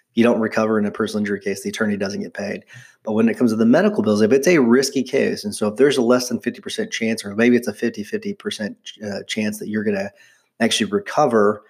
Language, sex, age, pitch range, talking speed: English, male, 30-49, 105-130 Hz, 245 wpm